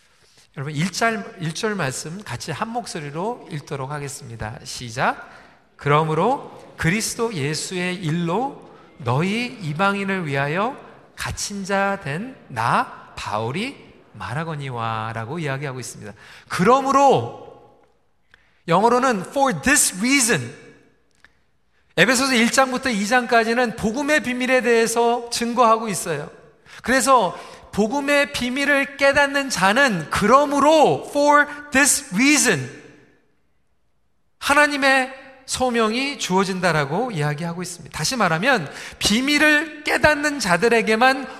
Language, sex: Korean, male